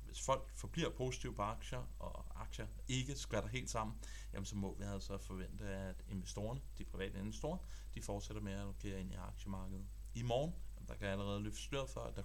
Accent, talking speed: native, 205 wpm